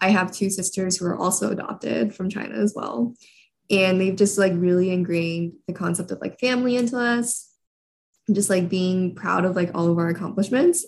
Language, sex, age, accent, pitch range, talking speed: English, female, 20-39, American, 180-220 Hz, 195 wpm